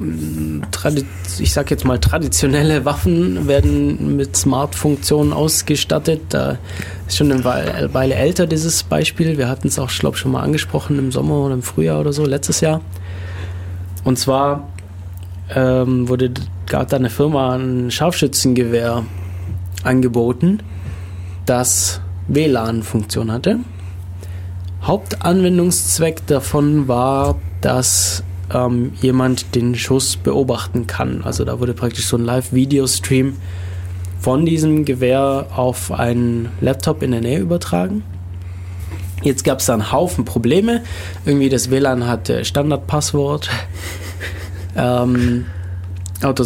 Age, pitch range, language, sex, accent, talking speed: 20-39, 90-130 Hz, German, male, German, 115 wpm